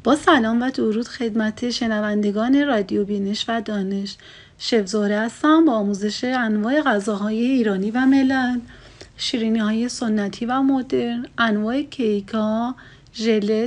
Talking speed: 120 wpm